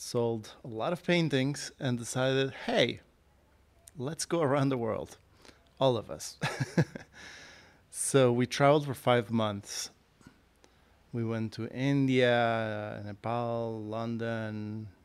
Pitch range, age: 110-130 Hz, 30-49